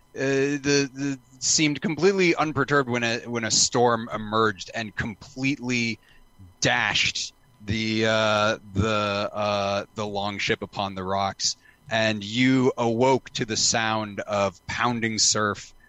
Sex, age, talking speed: male, 30-49, 130 wpm